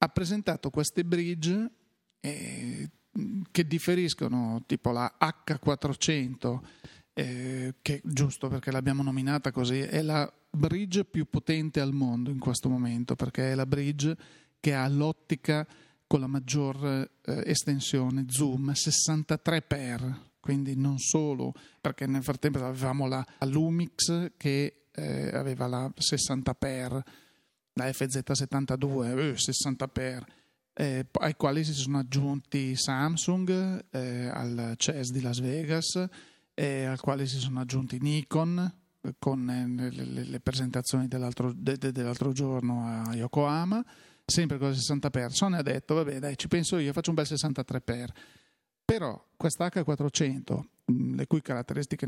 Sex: male